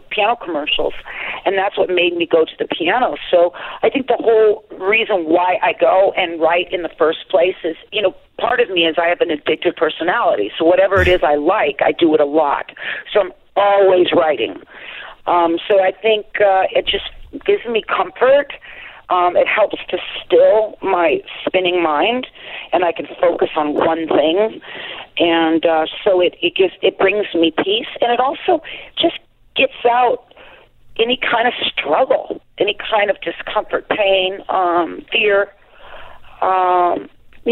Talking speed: 170 wpm